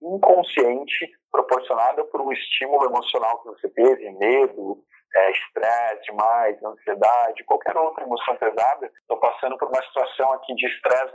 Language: Portuguese